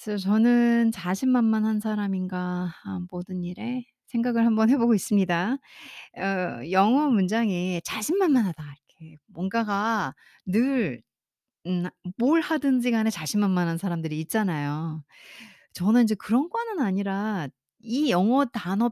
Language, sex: Korean, female